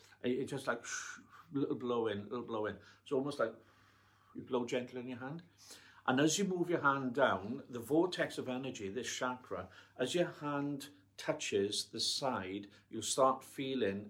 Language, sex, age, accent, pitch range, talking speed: English, male, 50-69, British, 110-140 Hz, 175 wpm